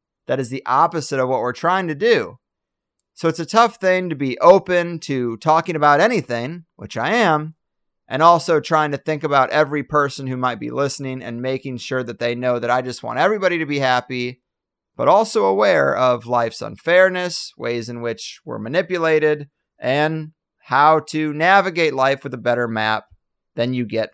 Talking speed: 185 wpm